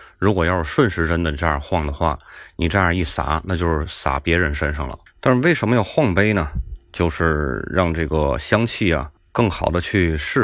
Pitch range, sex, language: 80-100 Hz, male, Chinese